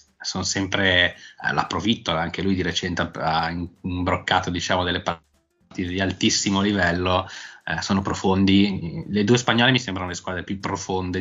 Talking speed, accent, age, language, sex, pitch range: 150 wpm, native, 20-39, Italian, male, 85-95 Hz